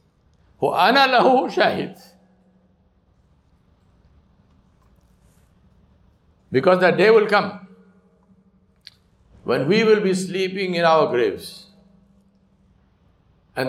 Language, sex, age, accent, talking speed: English, male, 60-79, Indian, 60 wpm